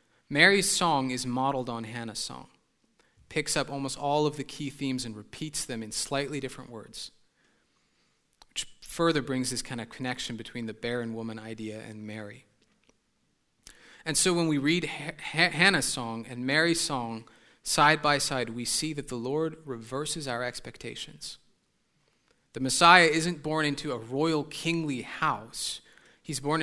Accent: American